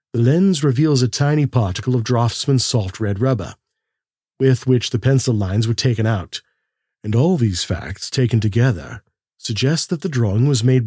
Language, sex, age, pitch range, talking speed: English, male, 40-59, 110-135 Hz, 170 wpm